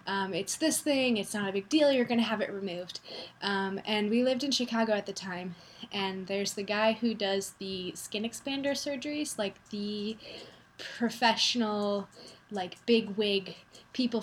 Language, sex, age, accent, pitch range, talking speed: English, female, 10-29, American, 195-240 Hz, 170 wpm